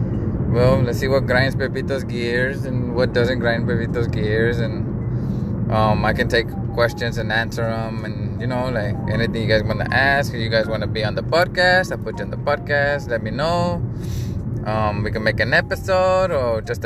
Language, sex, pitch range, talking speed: English, male, 110-130 Hz, 205 wpm